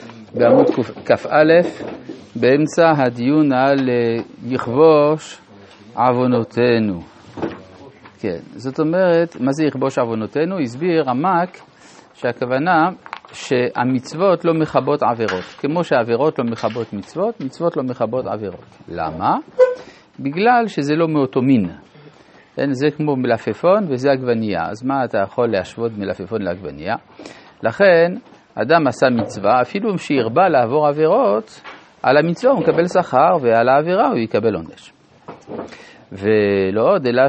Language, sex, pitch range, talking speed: Hebrew, male, 120-165 Hz, 110 wpm